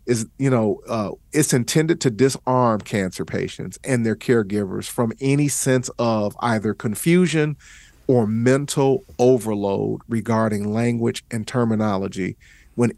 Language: English